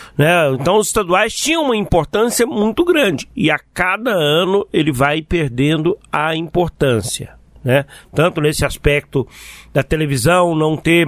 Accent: Brazilian